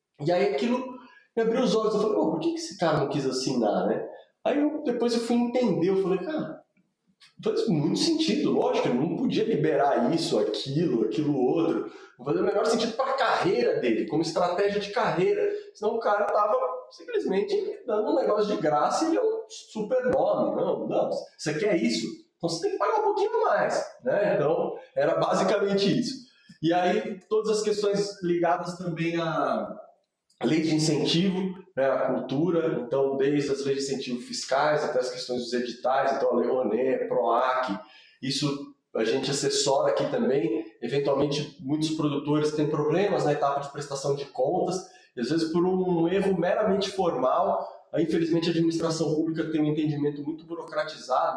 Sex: male